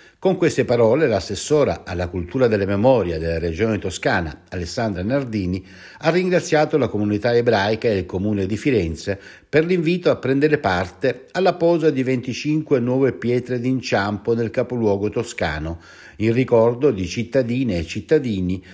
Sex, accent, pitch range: male, native, 100-145 Hz